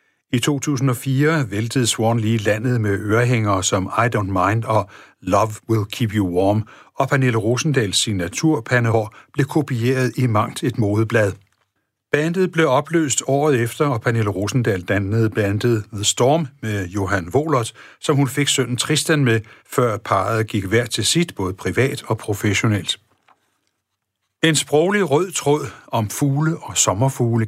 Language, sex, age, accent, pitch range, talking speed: Danish, male, 60-79, native, 105-140 Hz, 145 wpm